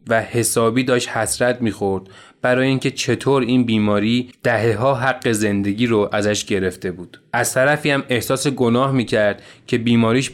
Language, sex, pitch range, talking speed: Persian, male, 105-130 Hz, 150 wpm